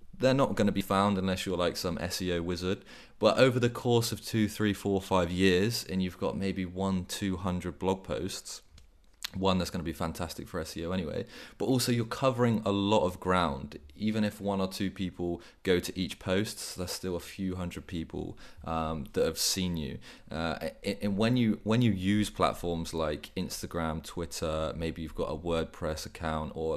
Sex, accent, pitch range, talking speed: male, British, 85-100 Hz, 190 wpm